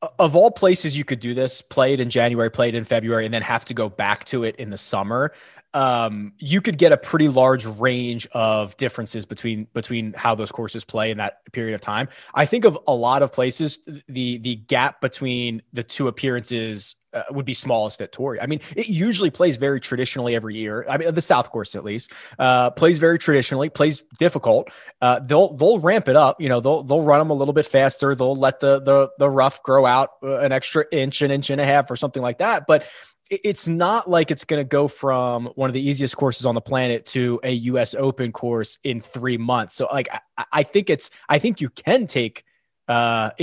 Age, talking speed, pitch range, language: 20-39, 225 wpm, 115-140 Hz, English